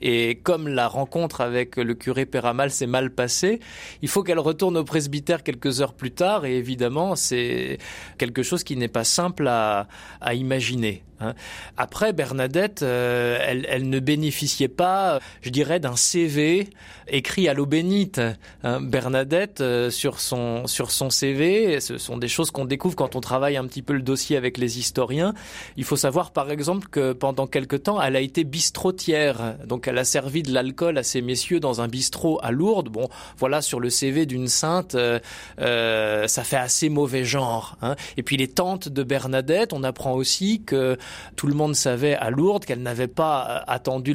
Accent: French